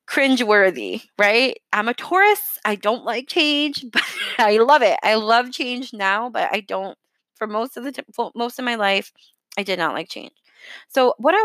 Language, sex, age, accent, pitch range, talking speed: English, female, 20-39, American, 200-265 Hz, 190 wpm